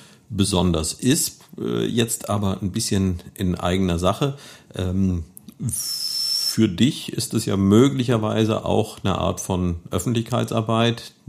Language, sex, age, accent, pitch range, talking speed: German, male, 50-69, German, 90-115 Hz, 105 wpm